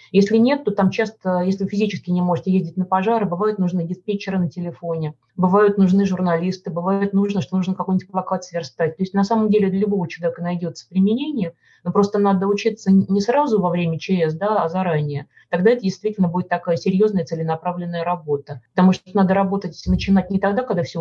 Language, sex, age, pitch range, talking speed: Russian, female, 30-49, 175-200 Hz, 195 wpm